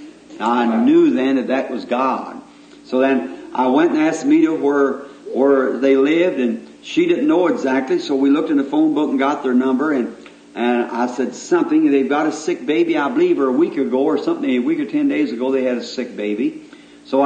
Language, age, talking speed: English, 50-69, 225 wpm